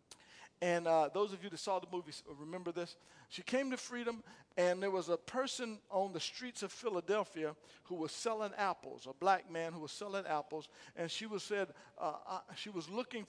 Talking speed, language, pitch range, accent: 200 wpm, English, 150-200 Hz, American